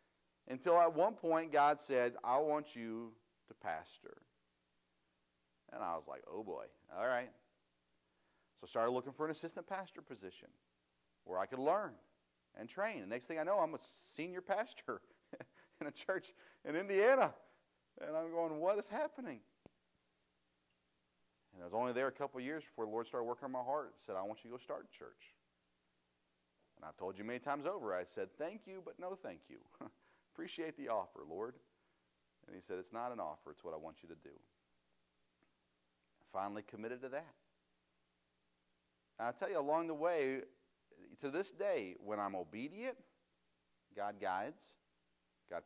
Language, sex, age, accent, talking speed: English, male, 40-59, American, 175 wpm